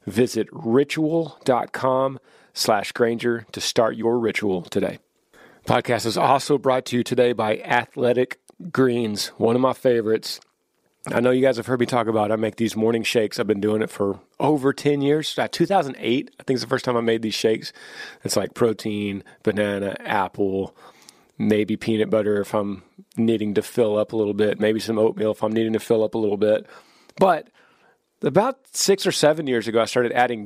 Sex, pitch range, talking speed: male, 110-135 Hz, 185 wpm